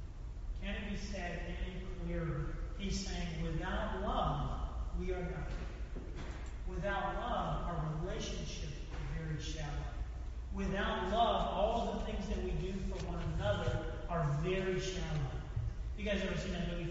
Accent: American